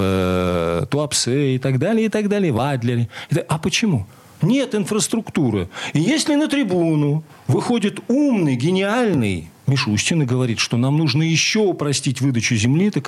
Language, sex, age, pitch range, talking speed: Russian, male, 40-59, 115-175 Hz, 135 wpm